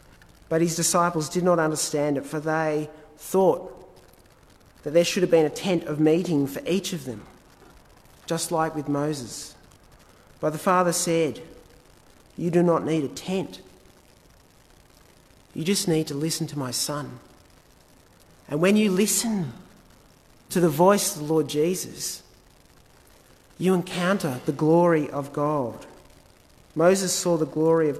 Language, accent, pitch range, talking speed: English, Australian, 145-175 Hz, 145 wpm